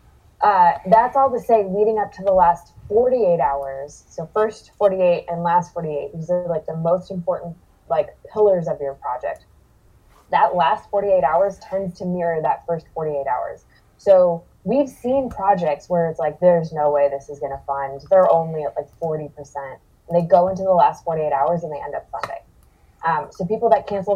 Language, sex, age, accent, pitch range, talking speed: English, female, 20-39, American, 155-195 Hz, 195 wpm